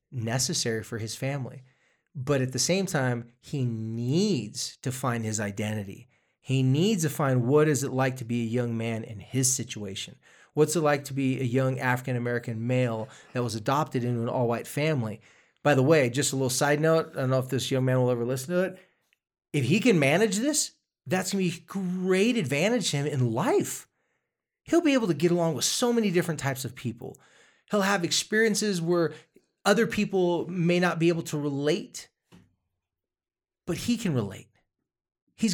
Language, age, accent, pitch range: English, 30-49, American, 120-170 Hz